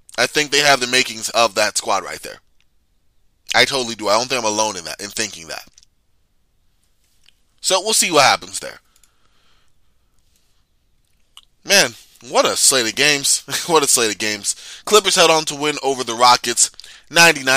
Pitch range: 115-150 Hz